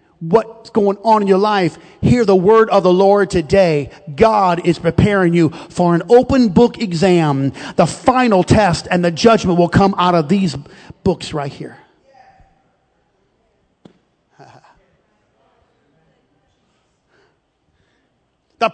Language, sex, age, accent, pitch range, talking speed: English, male, 40-59, American, 185-265 Hz, 120 wpm